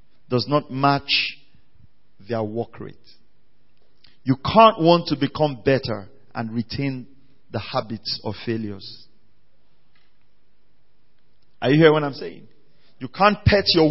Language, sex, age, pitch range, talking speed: English, male, 40-59, 120-155 Hz, 120 wpm